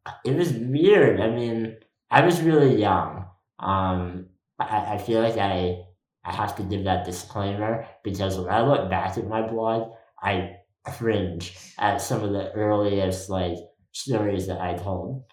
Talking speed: 160 wpm